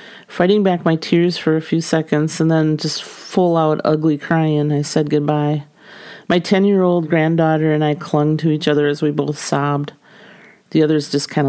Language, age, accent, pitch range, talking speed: English, 40-59, American, 150-165 Hz, 180 wpm